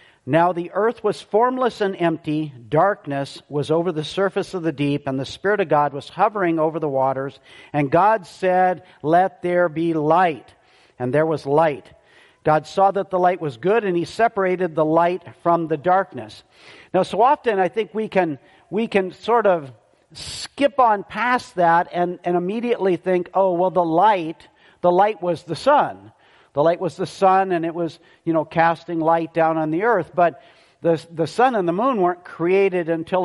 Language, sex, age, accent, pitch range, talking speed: English, male, 50-69, American, 155-190 Hz, 190 wpm